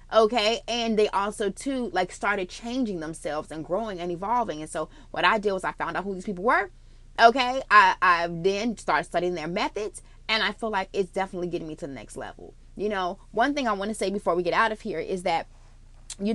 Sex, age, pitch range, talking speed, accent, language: female, 20-39, 175-220 Hz, 230 wpm, American, English